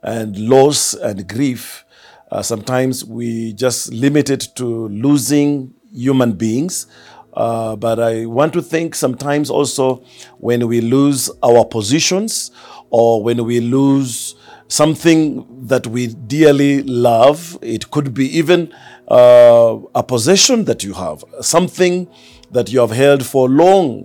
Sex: male